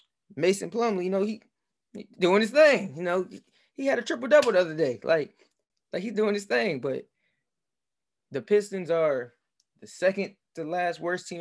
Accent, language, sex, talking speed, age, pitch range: American, English, male, 190 wpm, 20-39, 125-175 Hz